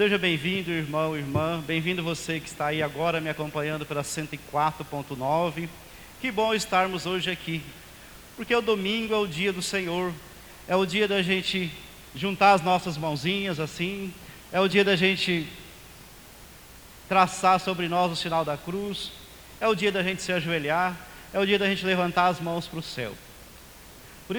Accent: Brazilian